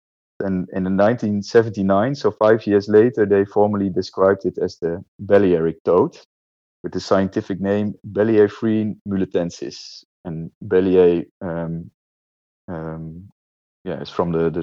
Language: English